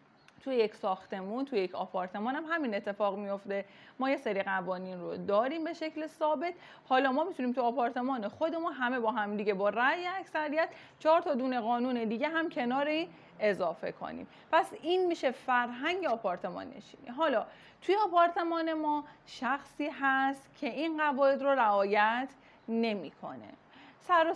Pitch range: 230-300 Hz